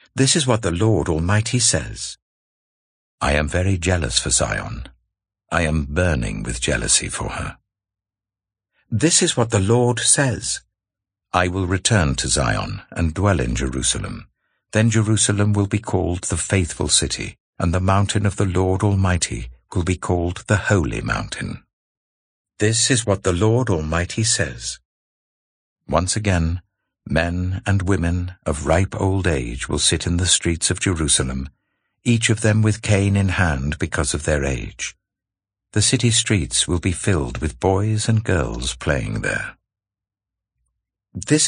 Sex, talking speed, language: male, 150 wpm, English